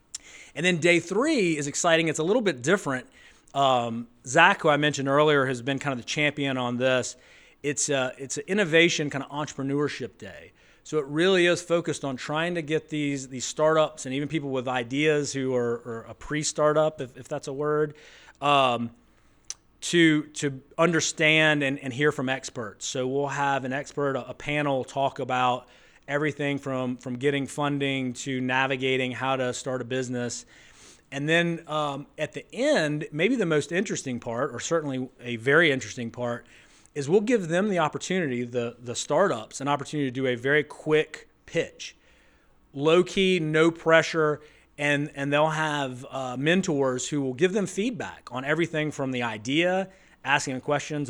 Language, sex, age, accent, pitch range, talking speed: English, male, 30-49, American, 130-155 Hz, 175 wpm